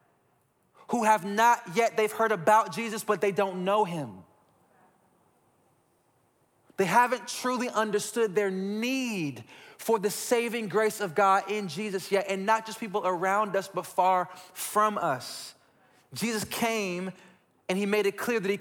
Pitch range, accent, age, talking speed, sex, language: 180-220 Hz, American, 20-39, 150 wpm, male, English